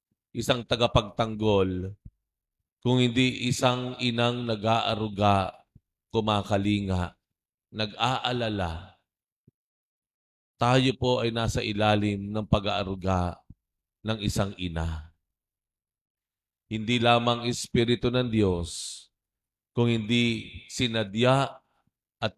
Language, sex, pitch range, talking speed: Filipino, male, 95-115 Hz, 75 wpm